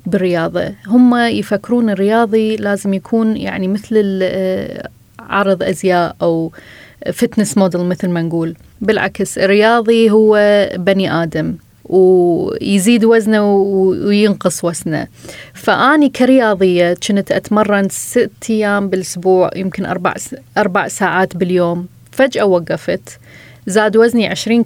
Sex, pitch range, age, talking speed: female, 190-230 Hz, 20-39, 100 wpm